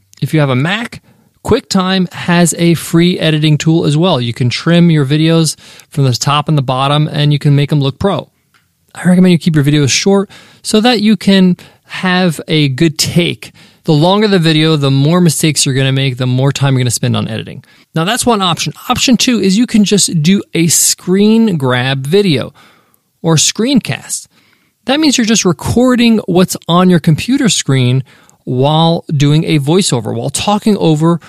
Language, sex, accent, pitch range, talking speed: English, male, American, 145-190 Hz, 190 wpm